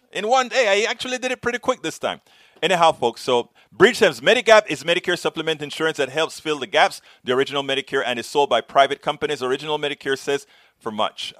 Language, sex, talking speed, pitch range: English, male, 205 wpm, 115-170 Hz